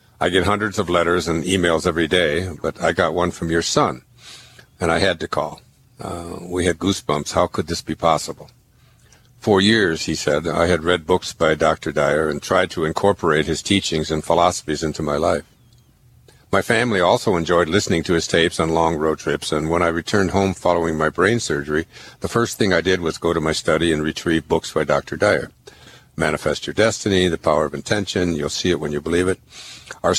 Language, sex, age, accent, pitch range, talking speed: English, male, 60-79, American, 80-100 Hz, 205 wpm